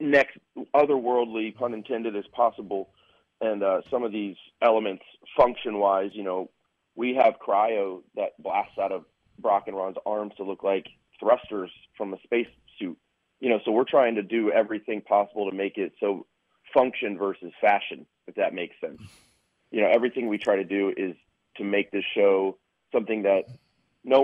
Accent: American